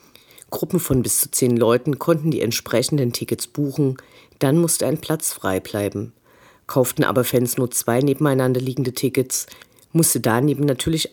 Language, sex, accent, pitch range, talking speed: German, female, German, 120-150 Hz, 150 wpm